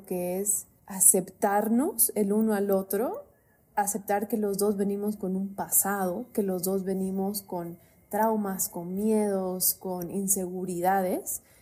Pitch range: 185-220 Hz